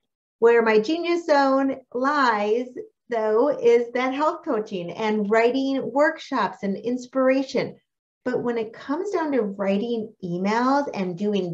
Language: English